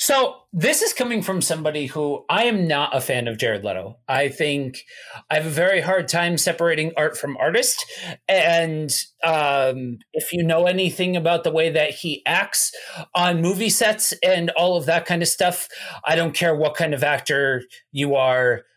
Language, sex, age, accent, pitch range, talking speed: English, male, 40-59, American, 155-255 Hz, 185 wpm